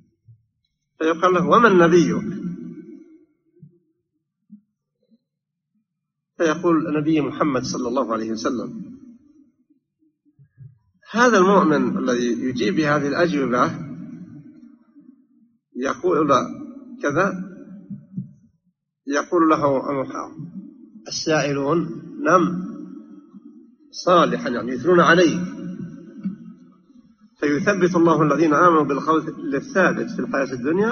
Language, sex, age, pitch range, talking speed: English, male, 50-69, 160-245 Hz, 75 wpm